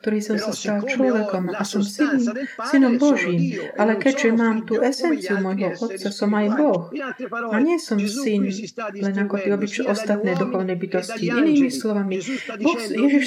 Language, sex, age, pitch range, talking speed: Slovak, female, 40-59, 200-265 Hz, 145 wpm